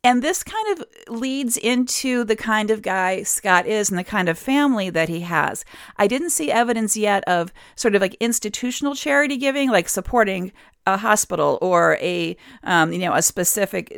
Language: English